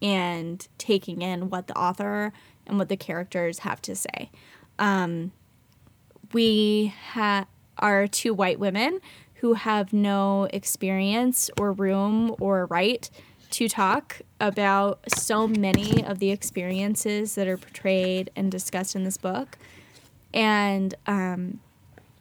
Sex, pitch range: female, 185-210 Hz